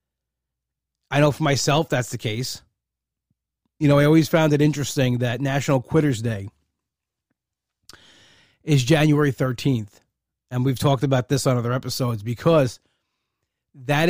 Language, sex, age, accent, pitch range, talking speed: English, male, 30-49, American, 125-155 Hz, 130 wpm